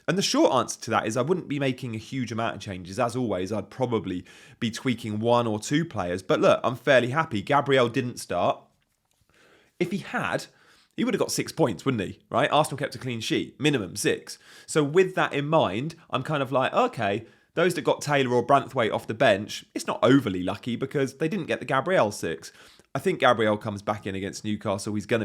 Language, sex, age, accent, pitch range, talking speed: English, male, 30-49, British, 100-135 Hz, 220 wpm